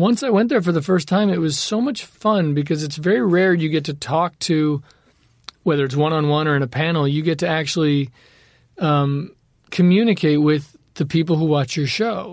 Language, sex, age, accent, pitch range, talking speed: English, male, 40-59, American, 145-175 Hz, 215 wpm